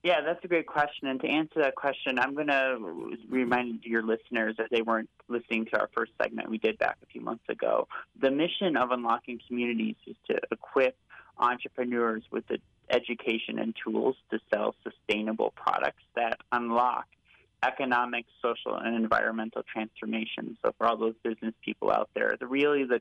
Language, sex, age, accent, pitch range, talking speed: English, male, 30-49, American, 110-130 Hz, 175 wpm